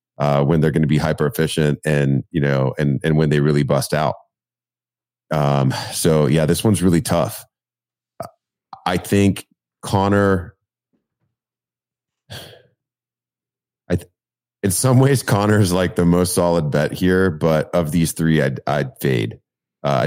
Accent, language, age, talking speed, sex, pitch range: American, English, 30-49, 145 wpm, male, 70-85 Hz